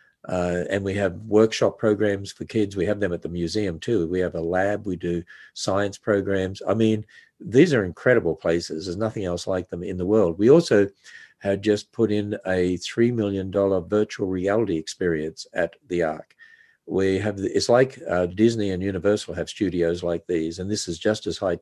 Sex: male